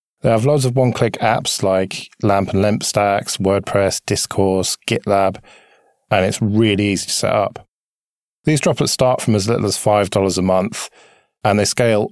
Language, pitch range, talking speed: English, 95-115 Hz, 170 wpm